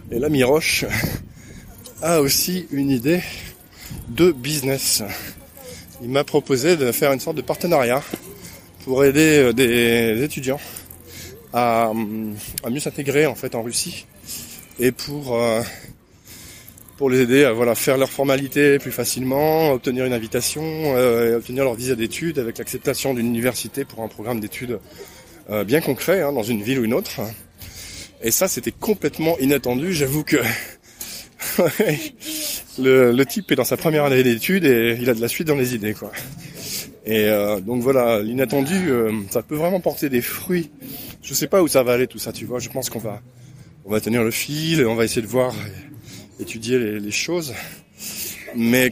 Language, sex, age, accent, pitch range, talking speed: French, male, 20-39, French, 115-145 Hz, 165 wpm